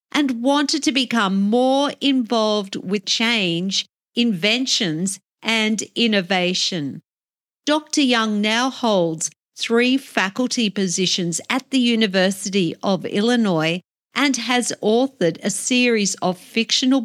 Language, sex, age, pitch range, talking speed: English, female, 50-69, 195-250 Hz, 105 wpm